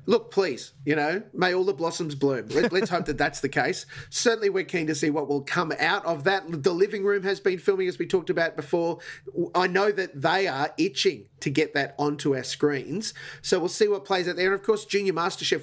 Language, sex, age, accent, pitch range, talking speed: English, male, 30-49, Australian, 145-195 Hz, 235 wpm